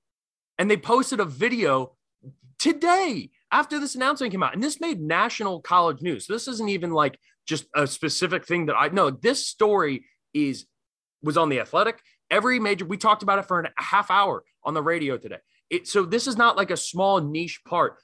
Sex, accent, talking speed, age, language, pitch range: male, American, 195 wpm, 20-39, English, 150-215 Hz